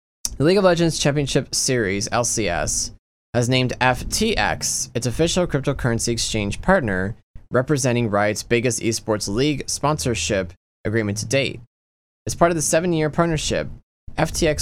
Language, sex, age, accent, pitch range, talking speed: English, male, 20-39, American, 105-140 Hz, 125 wpm